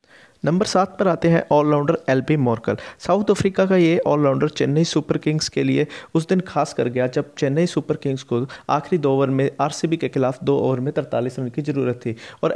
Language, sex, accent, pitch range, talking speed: Hindi, male, native, 135-160 Hz, 210 wpm